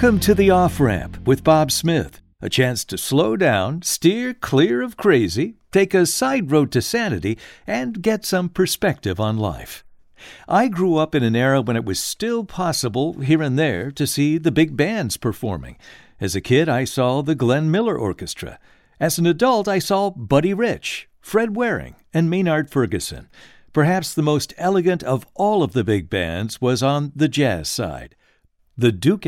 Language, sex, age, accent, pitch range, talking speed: English, male, 60-79, American, 125-180 Hz, 175 wpm